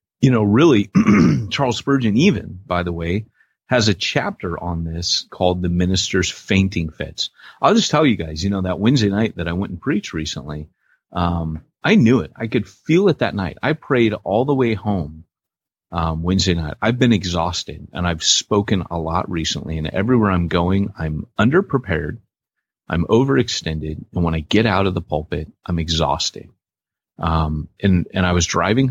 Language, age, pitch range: English, 30-49, 85-105 Hz